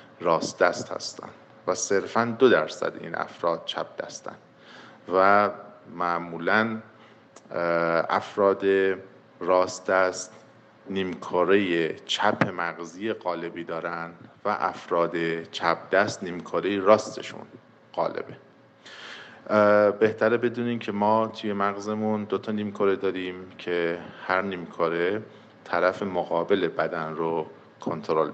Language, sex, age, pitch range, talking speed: Persian, male, 50-69, 85-105 Hz, 95 wpm